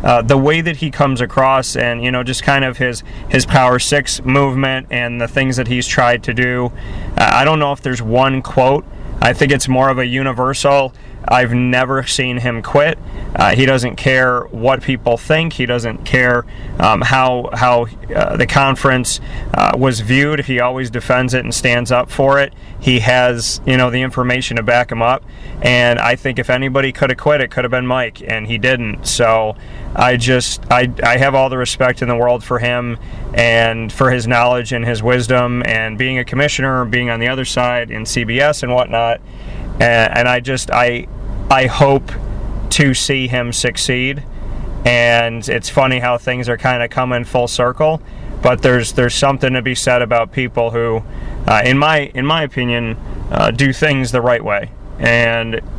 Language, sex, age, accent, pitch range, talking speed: English, male, 30-49, American, 120-130 Hz, 190 wpm